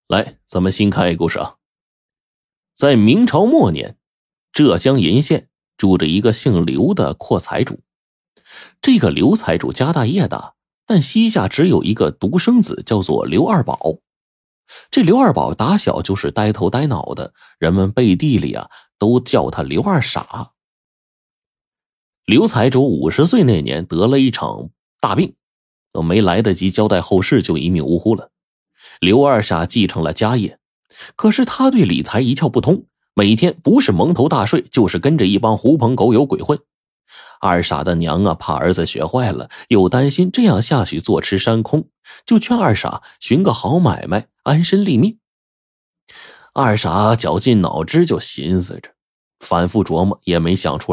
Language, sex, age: Chinese, male, 30-49